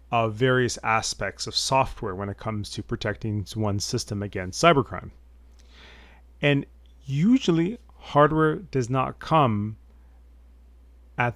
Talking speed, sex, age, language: 110 wpm, male, 30-49, English